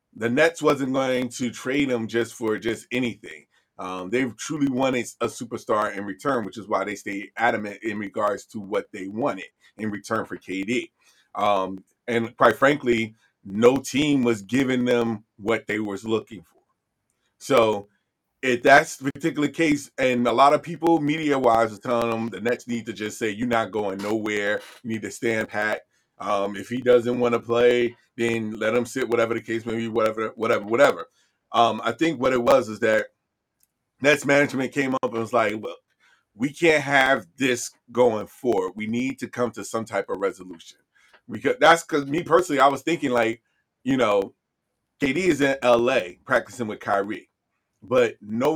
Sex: male